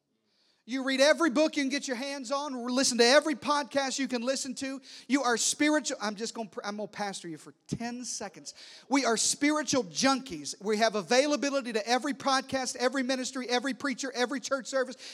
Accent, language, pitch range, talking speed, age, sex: American, English, 210-280 Hz, 200 wpm, 40-59, male